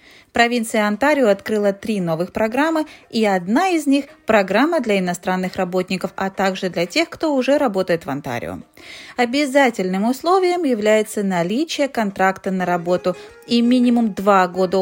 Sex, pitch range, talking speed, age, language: female, 195-280 Hz, 140 wpm, 30-49, Russian